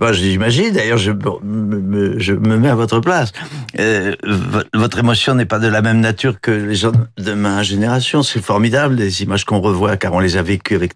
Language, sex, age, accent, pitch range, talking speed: French, male, 50-69, French, 120-160 Hz, 215 wpm